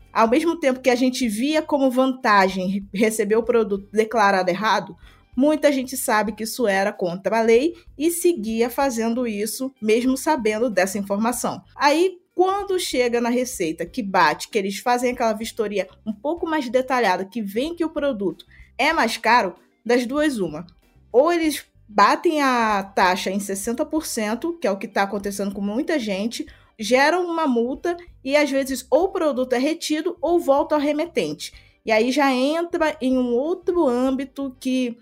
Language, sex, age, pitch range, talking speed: Portuguese, female, 20-39, 220-295 Hz, 170 wpm